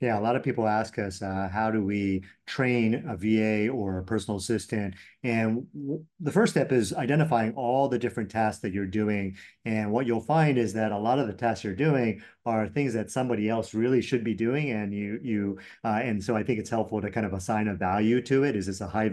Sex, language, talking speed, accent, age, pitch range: male, English, 240 wpm, American, 40-59, 105-130 Hz